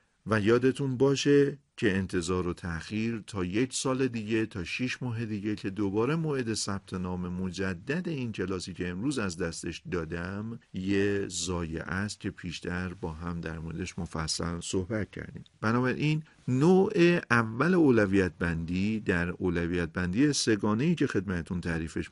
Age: 50-69